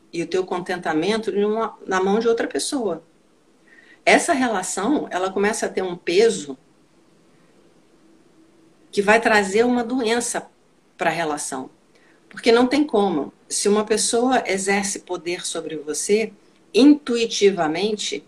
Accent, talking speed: Brazilian, 120 wpm